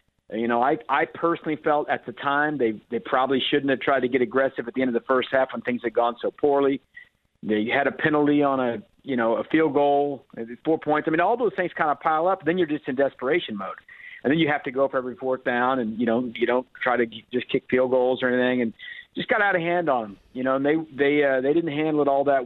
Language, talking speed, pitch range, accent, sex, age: English, 275 wpm, 125-155 Hz, American, male, 50-69